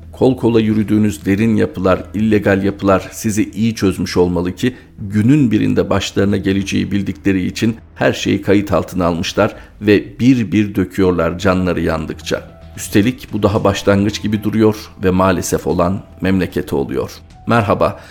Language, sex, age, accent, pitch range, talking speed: Turkish, male, 50-69, native, 90-105 Hz, 135 wpm